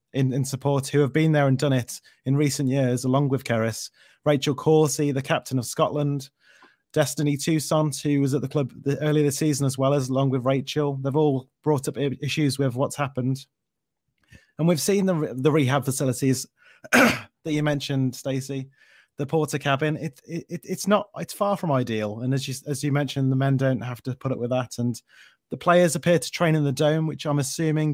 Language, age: English, 30-49